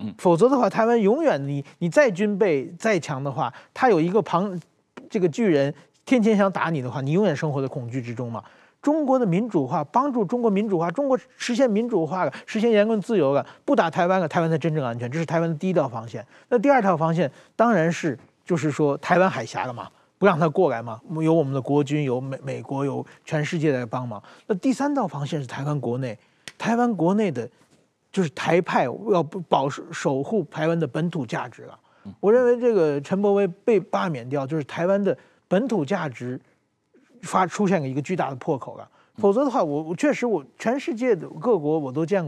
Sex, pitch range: male, 150-225 Hz